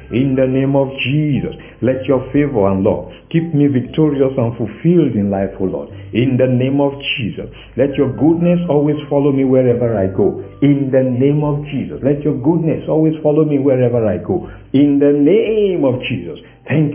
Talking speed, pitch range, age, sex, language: 190 wpm, 115-145 Hz, 60-79, male, English